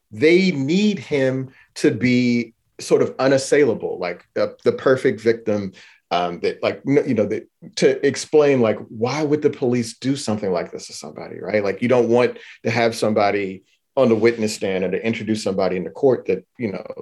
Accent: American